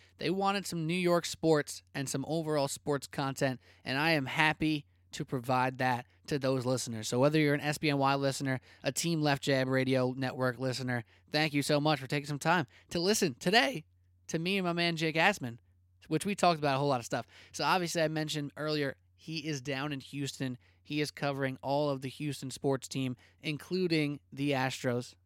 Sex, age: male, 20-39